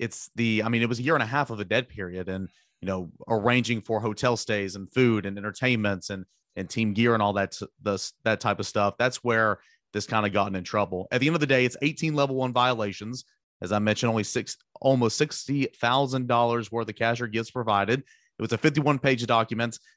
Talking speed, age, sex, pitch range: 235 wpm, 30-49, male, 110-130 Hz